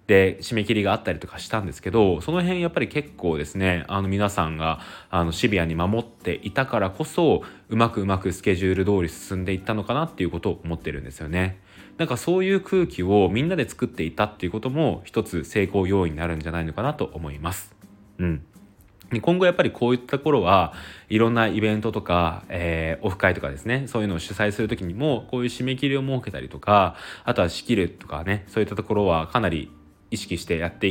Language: Japanese